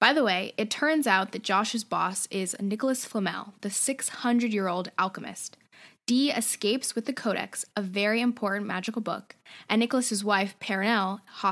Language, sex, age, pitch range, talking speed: English, female, 10-29, 200-245 Hz, 150 wpm